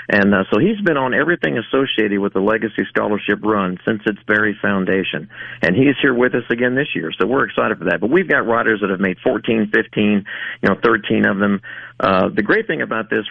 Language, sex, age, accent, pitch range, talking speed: English, male, 50-69, American, 100-120 Hz, 225 wpm